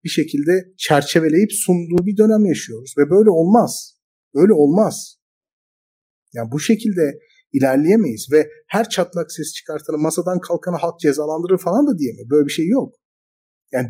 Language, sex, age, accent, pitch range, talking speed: Turkish, male, 50-69, native, 150-205 Hz, 145 wpm